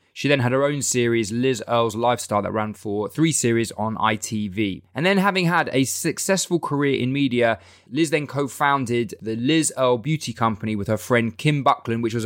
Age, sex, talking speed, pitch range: 20-39, male, 195 wpm, 110-140 Hz